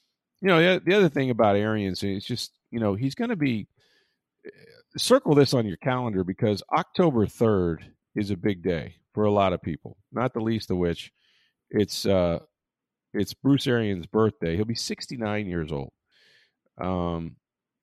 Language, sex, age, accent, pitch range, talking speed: English, male, 40-59, American, 85-105 Hz, 170 wpm